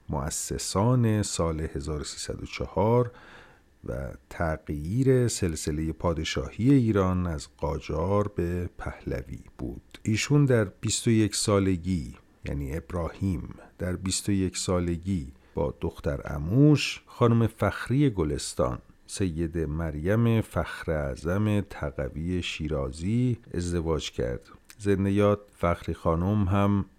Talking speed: 90 wpm